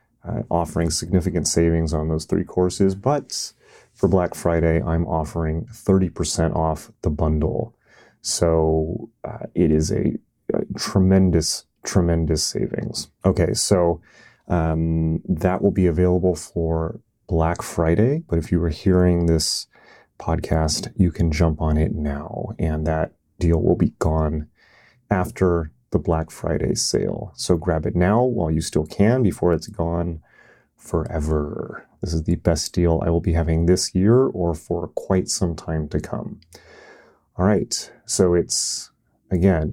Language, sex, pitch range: English, male, 80-95 Hz